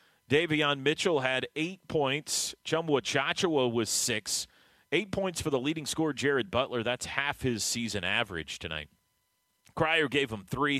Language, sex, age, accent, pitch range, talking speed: English, male, 30-49, American, 100-150 Hz, 150 wpm